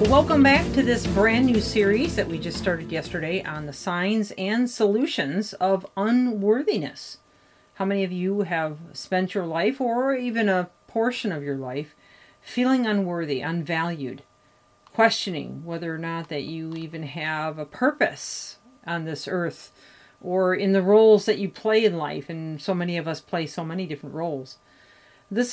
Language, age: English, 40-59